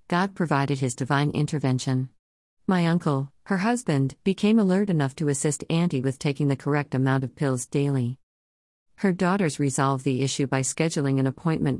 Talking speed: 165 wpm